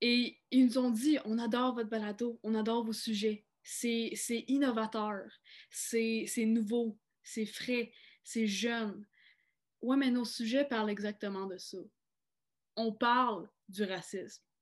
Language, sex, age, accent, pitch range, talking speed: French, female, 20-39, Canadian, 205-240 Hz, 145 wpm